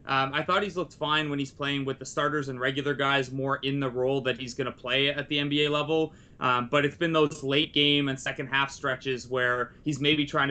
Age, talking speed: 20-39, 245 wpm